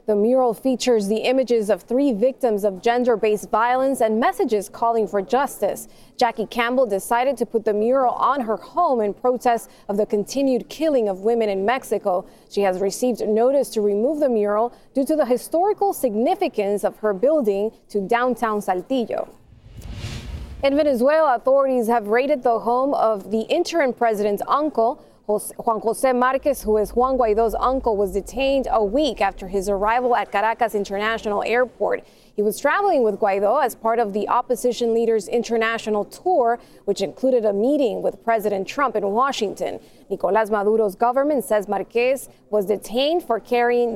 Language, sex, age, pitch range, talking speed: English, female, 20-39, 210-265 Hz, 160 wpm